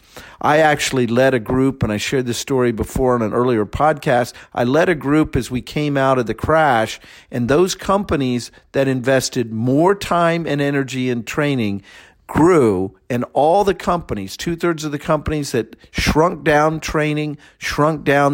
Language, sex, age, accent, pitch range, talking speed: English, male, 50-69, American, 120-155 Hz, 170 wpm